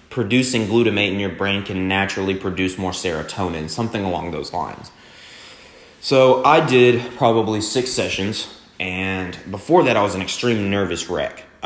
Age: 20-39